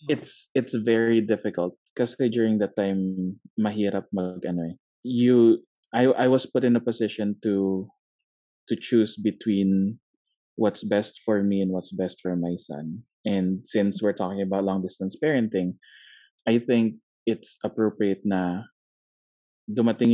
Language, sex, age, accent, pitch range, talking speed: Filipino, male, 20-39, native, 95-110 Hz, 135 wpm